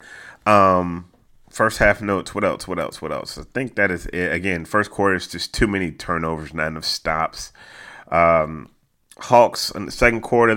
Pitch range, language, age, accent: 85-115 Hz, English, 30-49, American